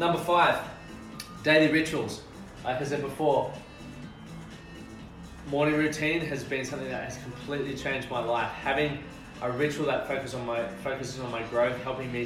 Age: 20-39